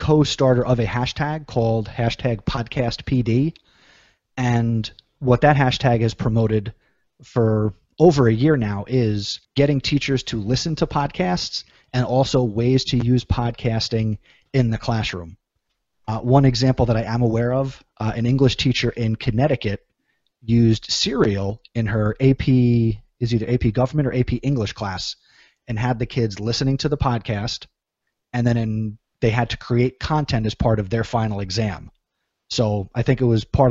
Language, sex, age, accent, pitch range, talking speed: English, male, 30-49, American, 110-130 Hz, 160 wpm